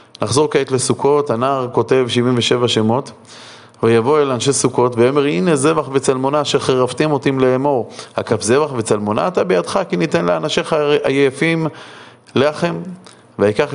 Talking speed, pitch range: 135 wpm, 115-140 Hz